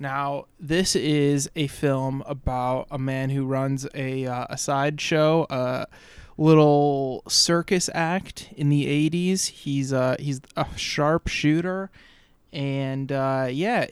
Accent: American